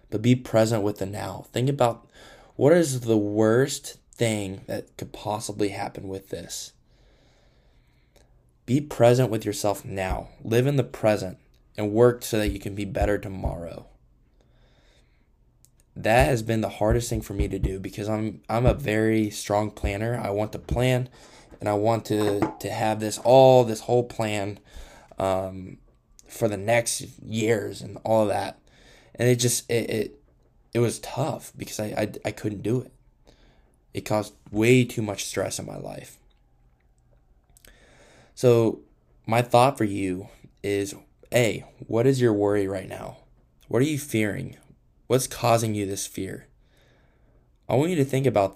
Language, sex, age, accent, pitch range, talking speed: English, male, 20-39, American, 100-120 Hz, 160 wpm